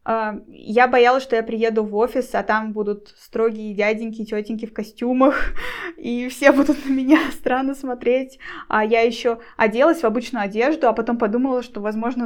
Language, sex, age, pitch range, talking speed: Russian, female, 20-39, 220-260 Hz, 165 wpm